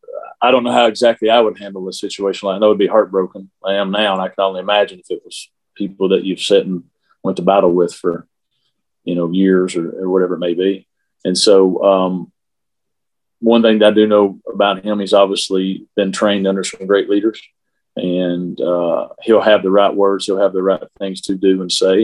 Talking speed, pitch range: 220 wpm, 95-100 Hz